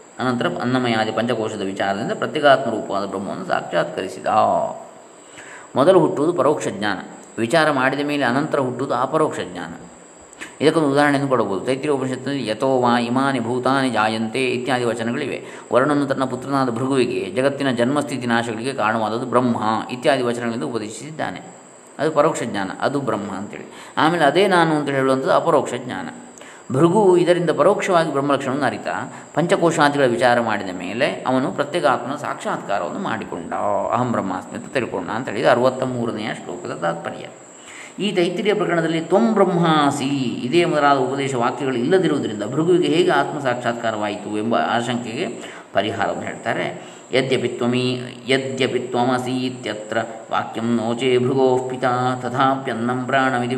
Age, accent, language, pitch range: 20-39, native, Kannada, 115-140 Hz